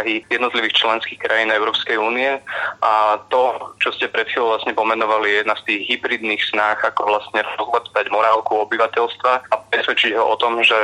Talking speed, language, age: 160 wpm, Slovak, 20-39